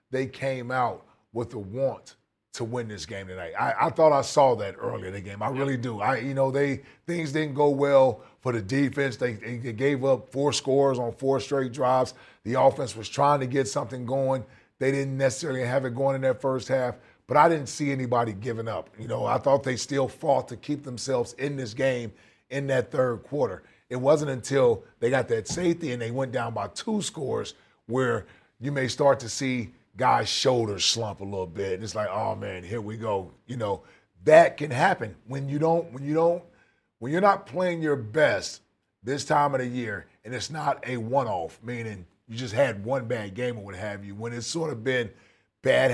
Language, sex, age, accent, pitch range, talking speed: English, male, 30-49, American, 115-140 Hz, 220 wpm